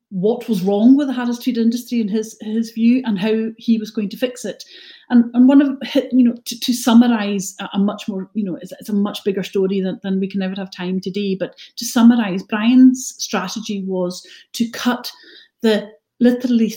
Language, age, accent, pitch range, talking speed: English, 40-59, British, 190-235 Hz, 205 wpm